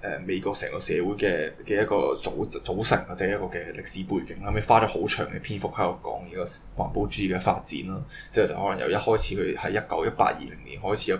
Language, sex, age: Chinese, male, 10-29